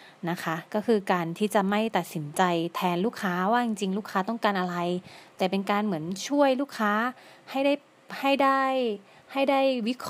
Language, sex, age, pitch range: Thai, female, 20-39, 180-220 Hz